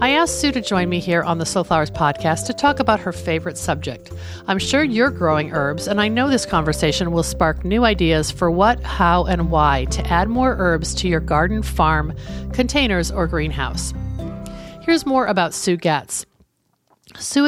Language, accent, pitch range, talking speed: English, American, 155-215 Hz, 180 wpm